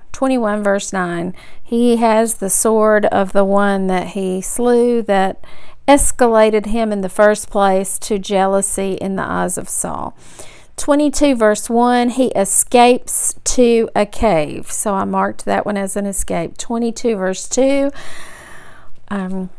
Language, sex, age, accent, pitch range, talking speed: English, female, 40-59, American, 195-245 Hz, 145 wpm